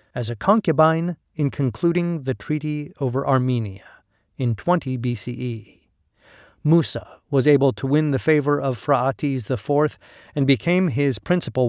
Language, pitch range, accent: English, 115-145 Hz, American